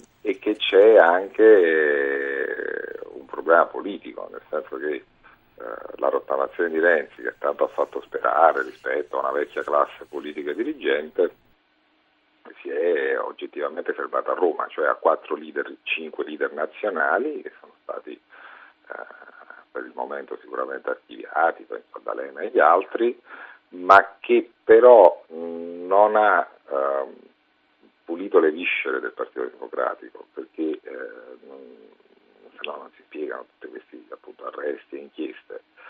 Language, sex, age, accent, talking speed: Italian, male, 50-69, native, 135 wpm